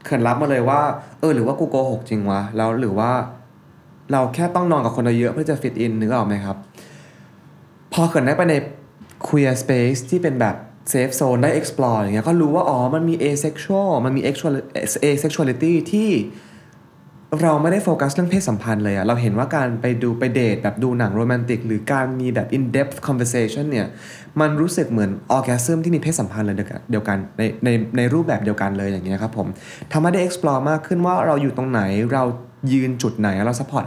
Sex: male